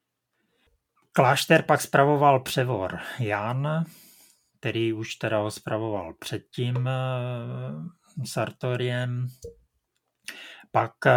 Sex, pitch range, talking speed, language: male, 110-130 Hz, 70 wpm, Czech